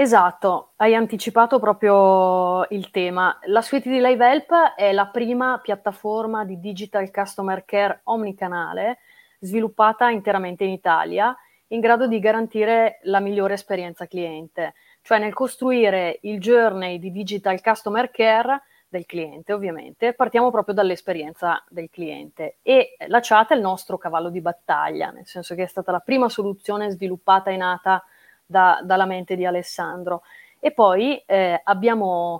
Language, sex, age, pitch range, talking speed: Italian, female, 30-49, 185-230 Hz, 145 wpm